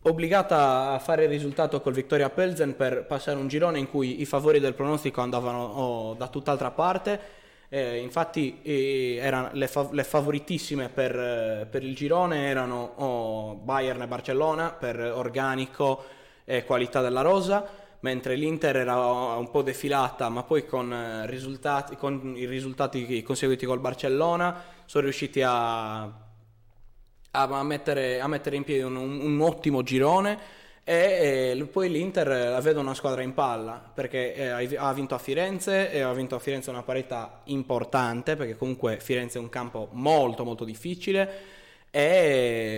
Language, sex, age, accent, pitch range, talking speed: Italian, male, 20-39, native, 125-145 Hz, 160 wpm